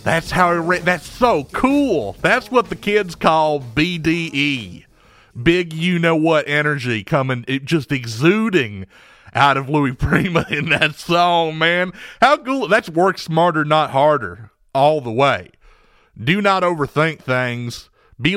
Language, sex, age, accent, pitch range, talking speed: English, male, 40-59, American, 140-185 Hz, 145 wpm